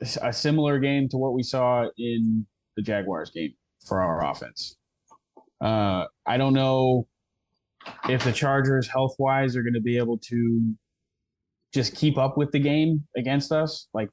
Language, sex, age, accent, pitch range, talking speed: English, male, 20-39, American, 105-125 Hz, 160 wpm